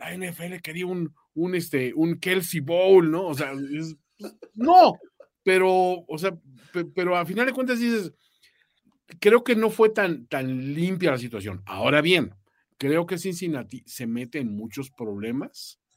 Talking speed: 160 wpm